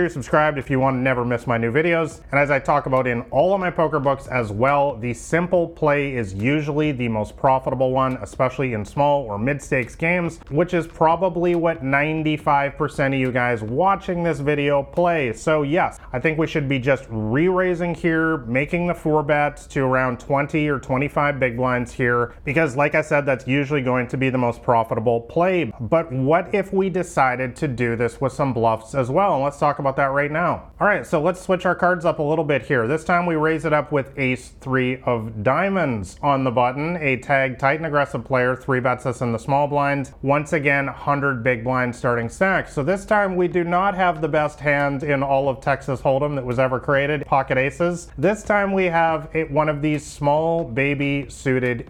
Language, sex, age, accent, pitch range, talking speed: English, male, 30-49, American, 130-160 Hz, 215 wpm